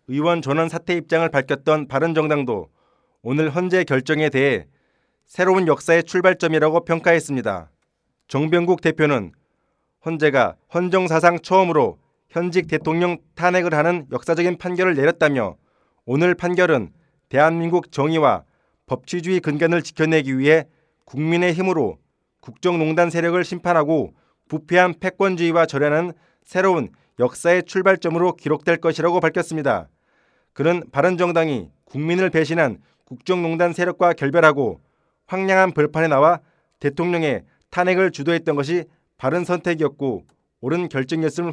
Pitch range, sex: 155-180 Hz, male